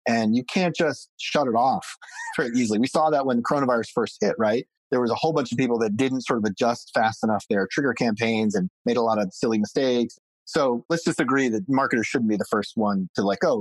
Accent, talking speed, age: American, 245 wpm, 30-49